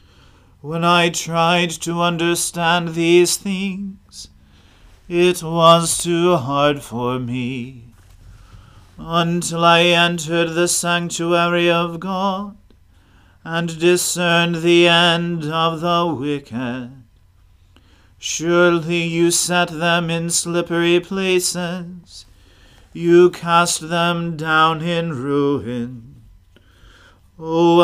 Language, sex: English, male